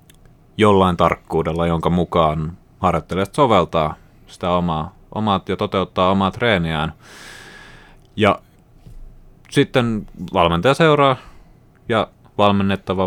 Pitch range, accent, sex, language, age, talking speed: 80-100 Hz, native, male, Finnish, 30-49, 85 wpm